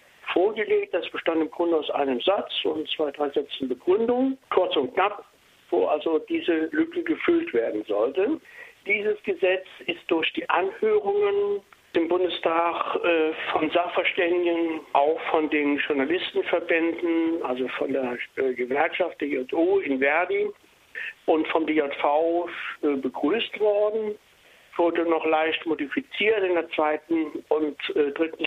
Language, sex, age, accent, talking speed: German, male, 60-79, German, 135 wpm